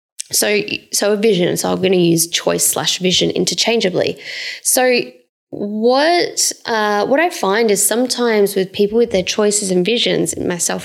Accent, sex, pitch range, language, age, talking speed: Australian, female, 195-255 Hz, English, 10-29, 160 wpm